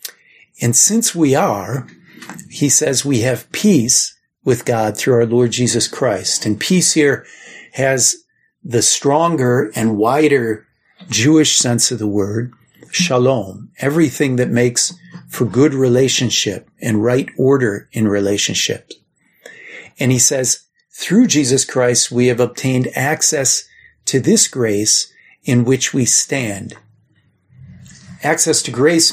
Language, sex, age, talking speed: English, male, 50-69, 125 wpm